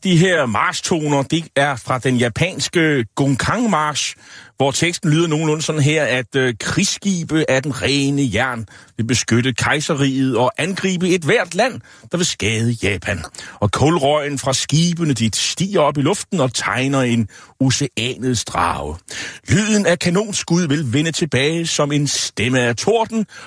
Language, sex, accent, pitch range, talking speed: Danish, male, native, 125-180 Hz, 150 wpm